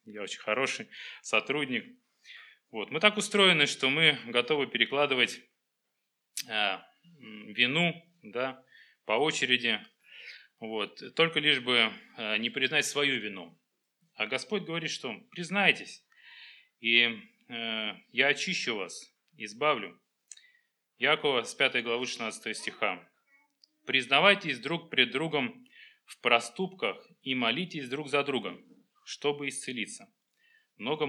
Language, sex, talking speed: Russian, male, 105 wpm